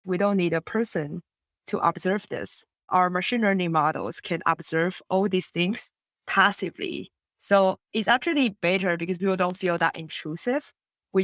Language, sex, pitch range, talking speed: English, female, 165-195 Hz, 155 wpm